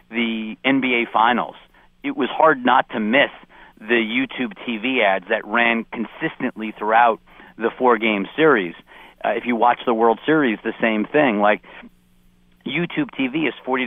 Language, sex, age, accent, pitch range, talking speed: English, male, 40-59, American, 100-125 Hz, 155 wpm